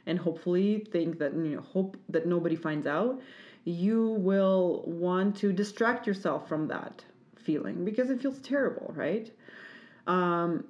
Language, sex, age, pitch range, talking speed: English, female, 30-49, 175-225 Hz, 145 wpm